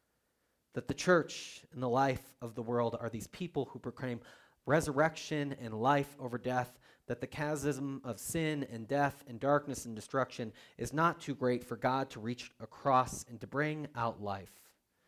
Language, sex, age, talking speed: English, male, 30-49, 175 wpm